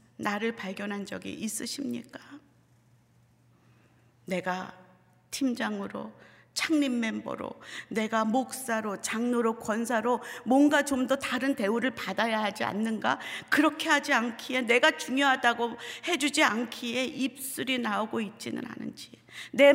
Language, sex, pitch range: Korean, female, 185-255 Hz